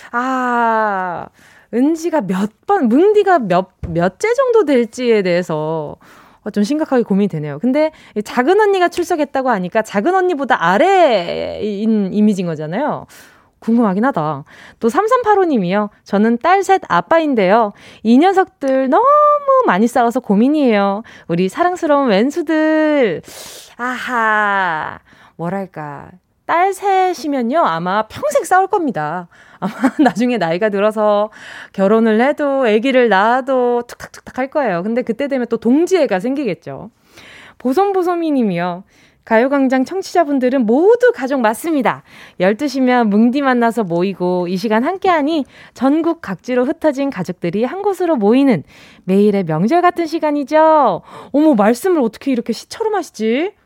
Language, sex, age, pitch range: Korean, female, 20-39, 210-310 Hz